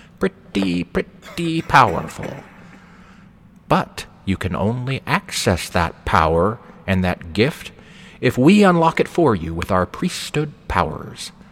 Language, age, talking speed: English, 40-59, 120 wpm